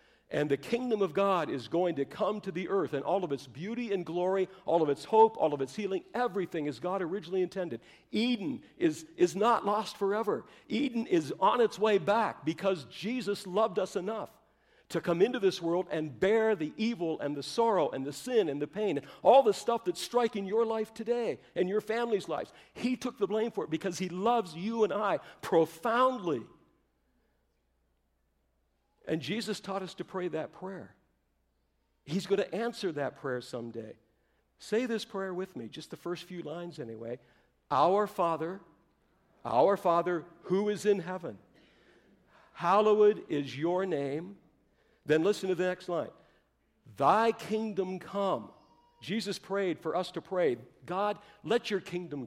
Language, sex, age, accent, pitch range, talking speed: English, male, 60-79, American, 160-215 Hz, 170 wpm